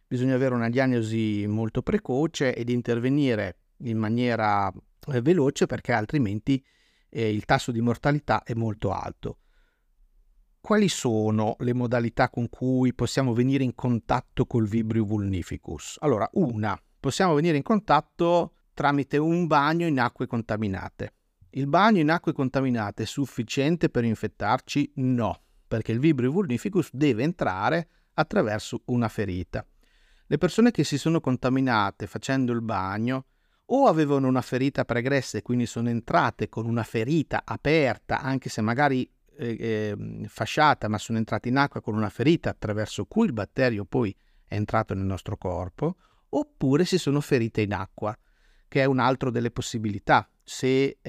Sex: male